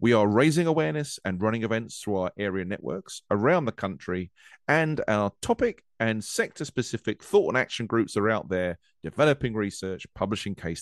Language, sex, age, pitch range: English, male, 40-59, 90-135 Hz